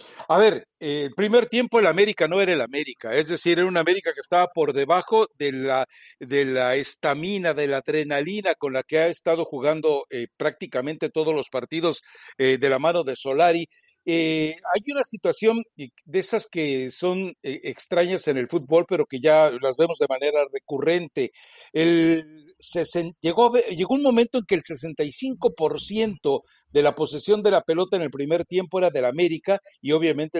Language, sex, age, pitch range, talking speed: Spanish, male, 60-79, 145-195 Hz, 180 wpm